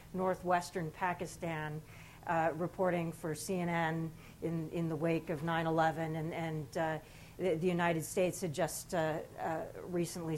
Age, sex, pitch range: 40-59, female, 160-200 Hz